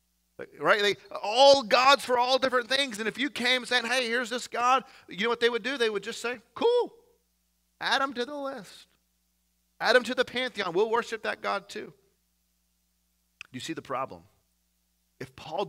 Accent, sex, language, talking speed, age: American, male, English, 190 wpm, 30-49